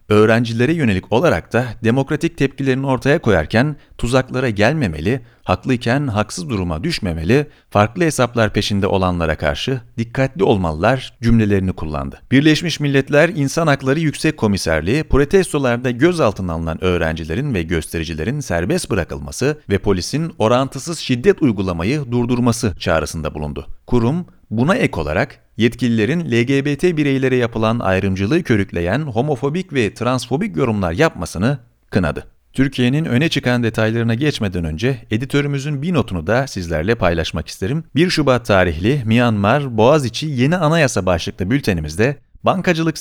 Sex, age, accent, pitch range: male, 40-59, native, 95-140 Hz